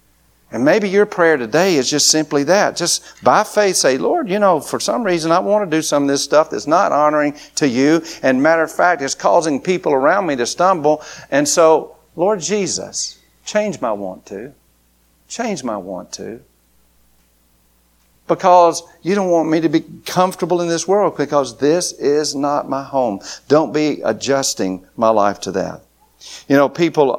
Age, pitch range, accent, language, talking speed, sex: 60-79, 115-165 Hz, American, English, 180 wpm, male